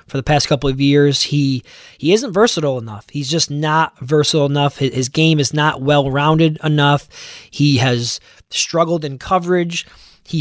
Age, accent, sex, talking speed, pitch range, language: 20-39, American, male, 160 wpm, 145-175 Hz, English